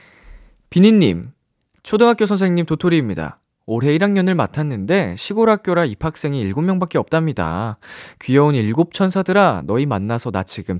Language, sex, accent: Korean, male, native